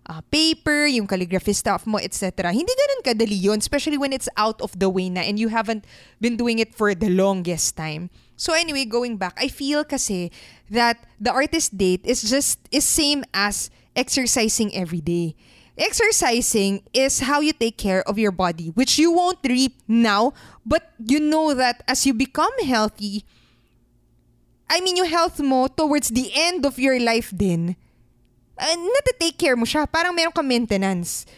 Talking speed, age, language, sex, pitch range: 175 wpm, 20-39, Filipino, female, 200-290 Hz